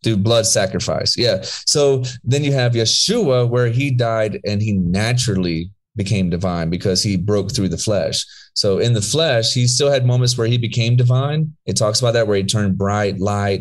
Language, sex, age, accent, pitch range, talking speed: English, male, 30-49, American, 100-125 Hz, 195 wpm